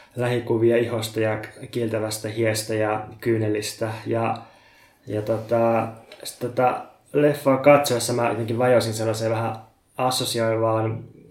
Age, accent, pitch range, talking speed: 20-39, native, 110-125 Hz, 100 wpm